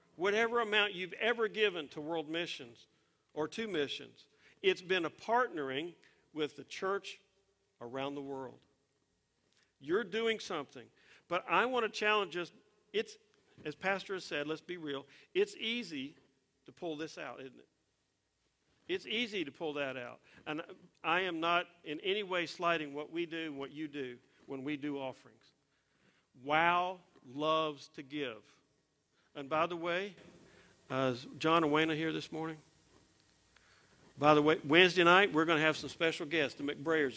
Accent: American